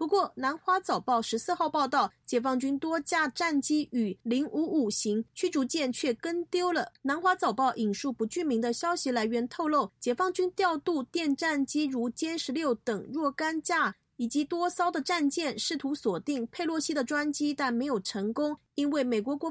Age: 30-49